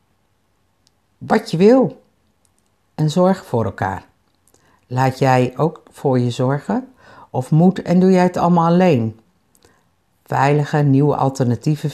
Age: 60-79